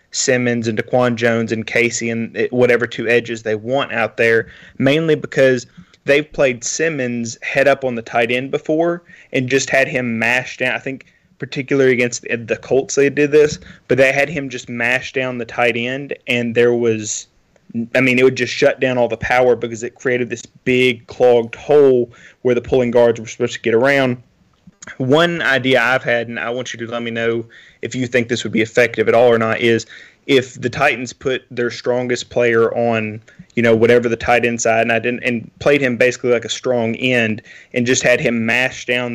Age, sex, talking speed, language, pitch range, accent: 20-39, male, 205 wpm, English, 115-130 Hz, American